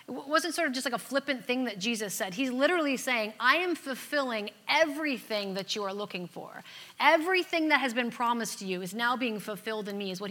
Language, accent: English, American